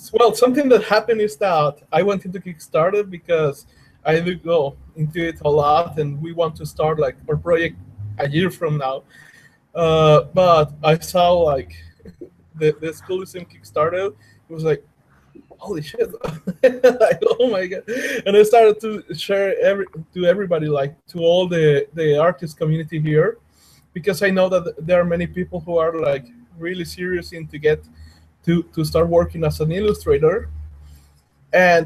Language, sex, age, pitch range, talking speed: English, male, 20-39, 155-190 Hz, 170 wpm